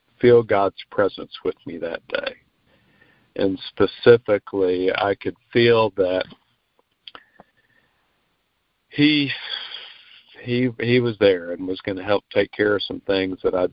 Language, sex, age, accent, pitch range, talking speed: English, male, 50-69, American, 95-115 Hz, 125 wpm